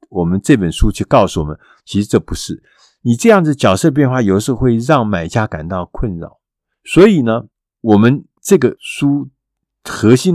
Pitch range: 95-140 Hz